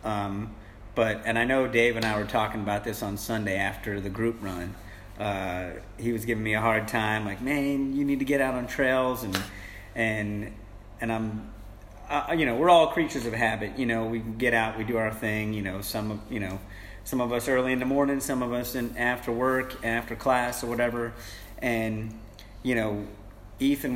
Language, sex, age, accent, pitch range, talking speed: English, male, 40-59, American, 105-125 Hz, 210 wpm